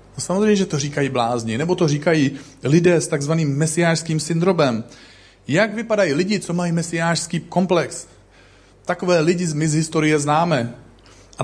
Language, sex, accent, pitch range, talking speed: Czech, male, native, 130-175 Hz, 145 wpm